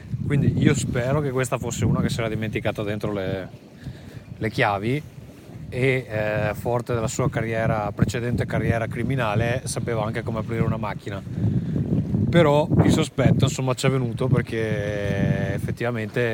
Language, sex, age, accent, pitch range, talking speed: Italian, male, 30-49, native, 105-135 Hz, 145 wpm